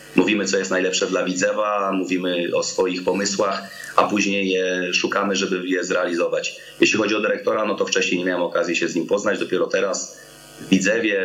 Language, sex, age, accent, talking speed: Polish, male, 30-49, native, 185 wpm